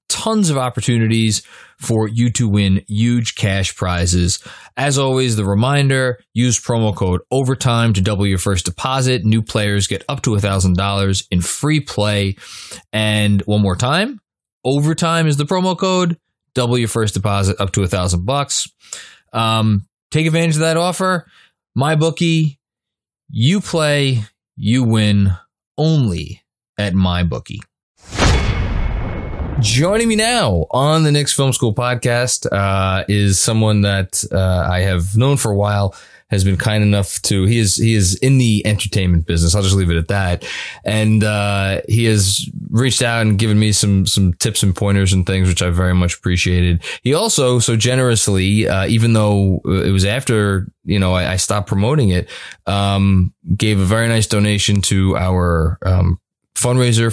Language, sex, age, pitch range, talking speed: English, male, 20-39, 95-125 Hz, 160 wpm